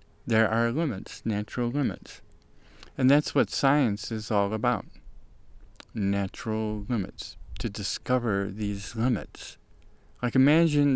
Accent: American